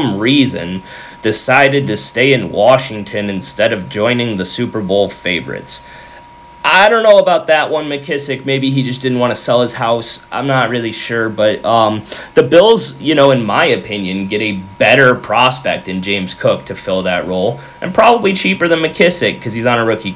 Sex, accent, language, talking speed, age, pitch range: male, American, English, 190 wpm, 30-49, 105-140 Hz